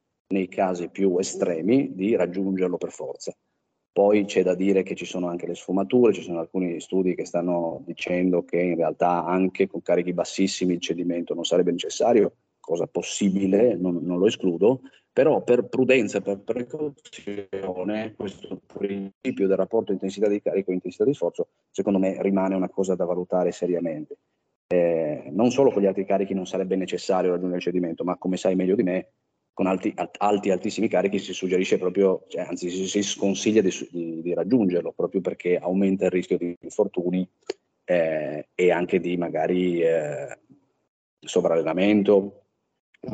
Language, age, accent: Italian, 30-49, native